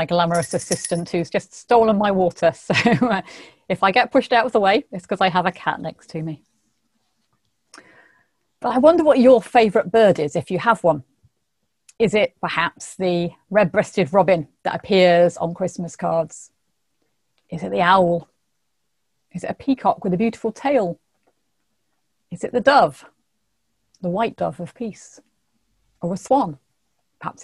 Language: English